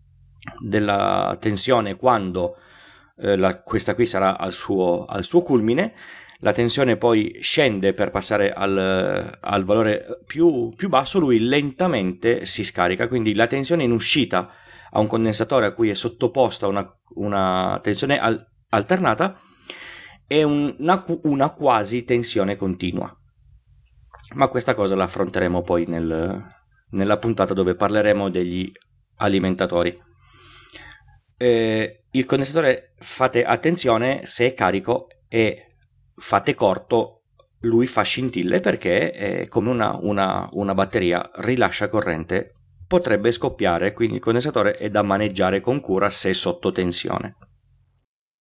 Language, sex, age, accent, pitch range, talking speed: Italian, male, 30-49, native, 100-125 Hz, 120 wpm